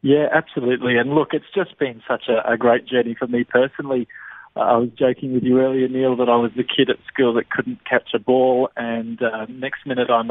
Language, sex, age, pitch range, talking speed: English, male, 20-39, 120-140 Hz, 235 wpm